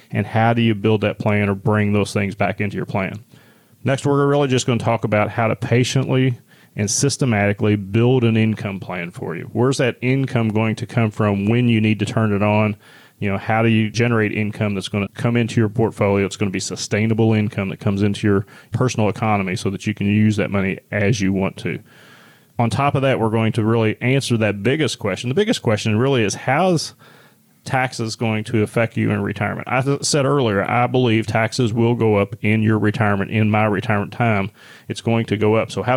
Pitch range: 105-120 Hz